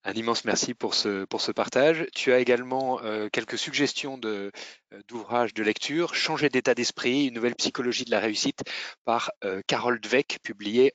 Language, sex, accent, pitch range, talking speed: French, male, French, 105-135 Hz, 175 wpm